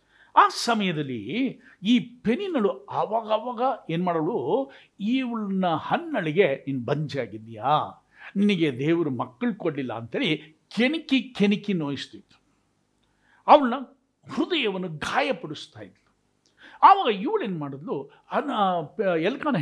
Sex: male